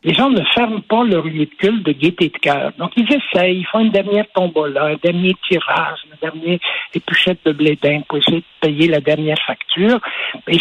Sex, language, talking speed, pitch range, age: male, French, 205 wpm, 160-210 Hz, 60-79